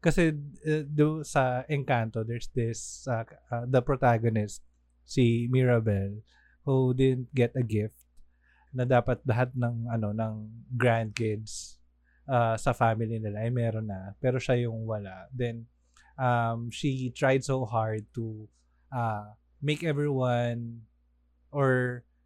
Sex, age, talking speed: male, 20-39, 130 wpm